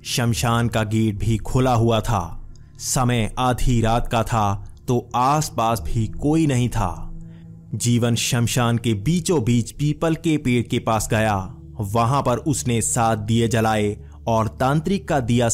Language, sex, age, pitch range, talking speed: Hindi, male, 30-49, 105-125 Hz, 150 wpm